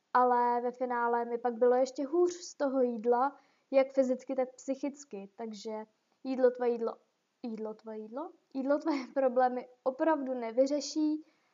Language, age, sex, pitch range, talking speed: Czech, 20-39, female, 240-275 Hz, 140 wpm